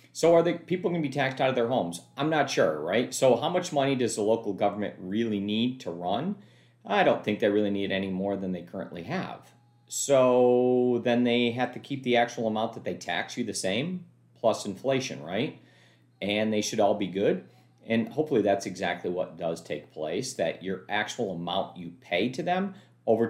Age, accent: 40-59, American